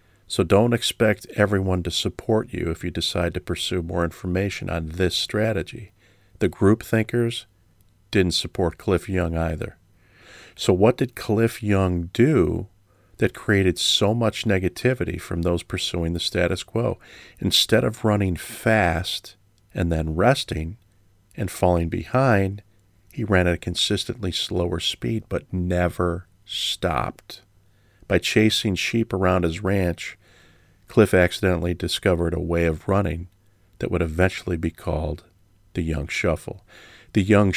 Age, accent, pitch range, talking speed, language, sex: 40-59, American, 90-105 Hz, 135 wpm, English, male